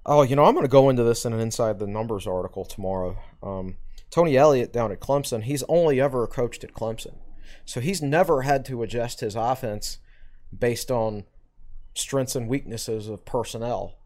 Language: English